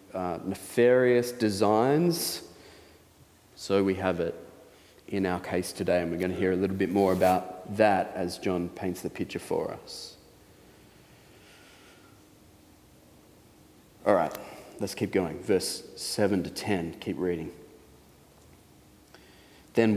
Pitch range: 95-120 Hz